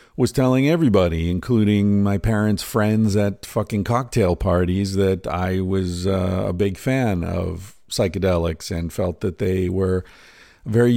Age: 50-69